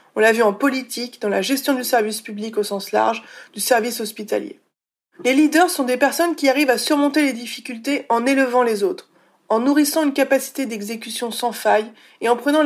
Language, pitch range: French, 225-285 Hz